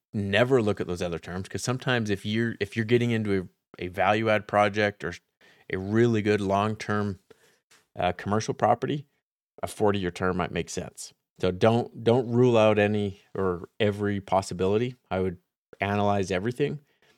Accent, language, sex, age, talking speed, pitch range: American, English, male, 30-49, 160 wpm, 95-110 Hz